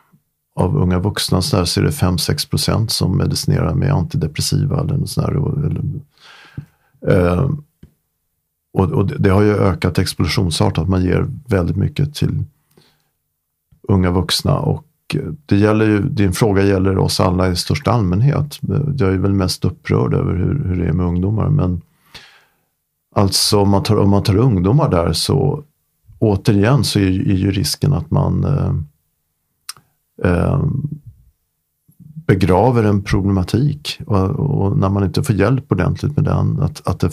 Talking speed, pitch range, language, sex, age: 140 wpm, 90-115 Hz, Swedish, male, 40-59